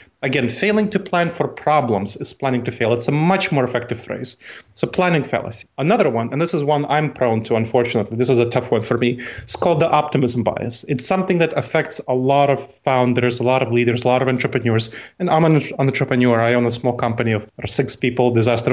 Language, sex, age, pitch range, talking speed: English, male, 30-49, 125-150 Hz, 225 wpm